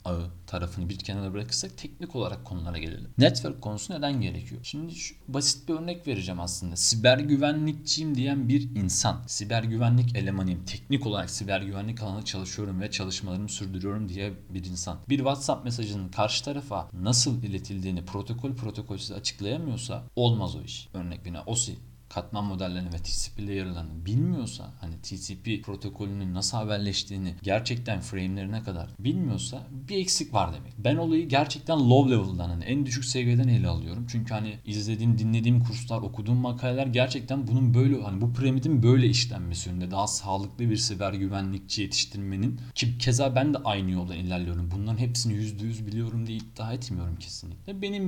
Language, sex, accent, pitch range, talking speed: Turkish, male, native, 95-125 Hz, 150 wpm